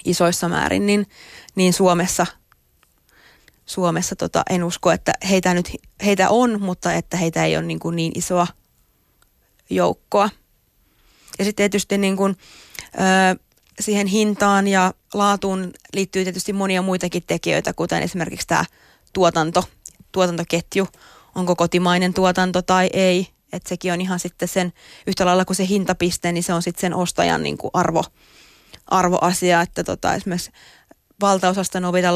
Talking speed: 140 wpm